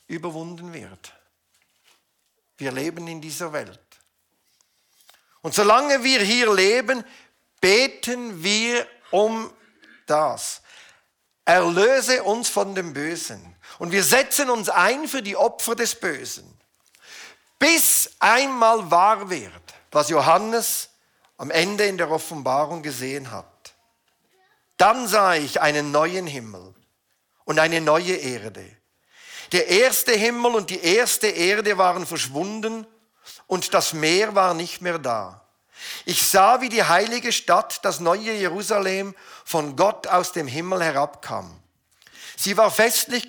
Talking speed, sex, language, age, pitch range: 120 wpm, male, German, 50-69, 155-220 Hz